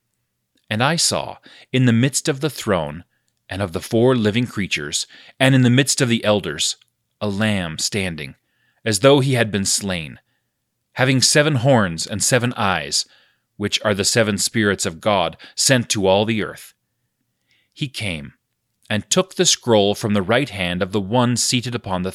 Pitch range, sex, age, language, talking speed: 100-125 Hz, male, 30-49, English, 175 wpm